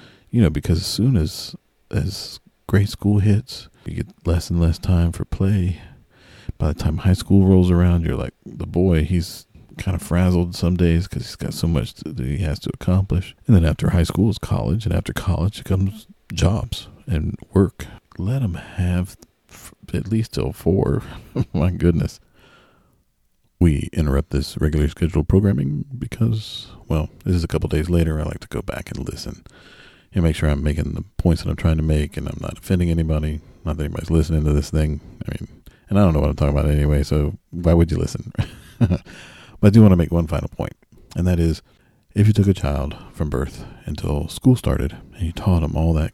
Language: English